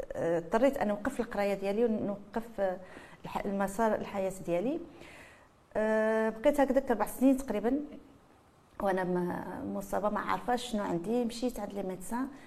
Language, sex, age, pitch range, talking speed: French, female, 40-59, 195-250 Hz, 115 wpm